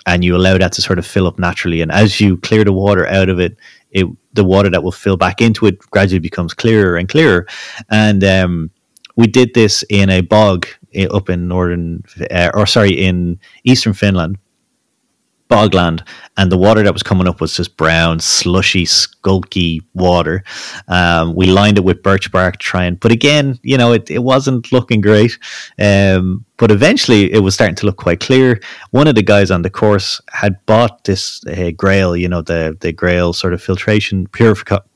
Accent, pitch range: Irish, 90-105 Hz